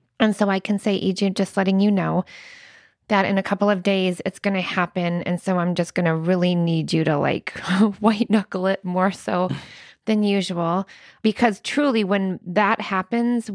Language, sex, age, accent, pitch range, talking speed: English, female, 20-39, American, 185-215 Hz, 190 wpm